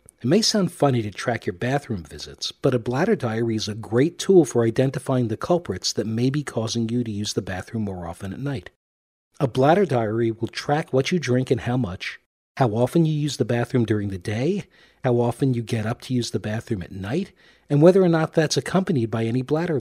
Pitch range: 110-145 Hz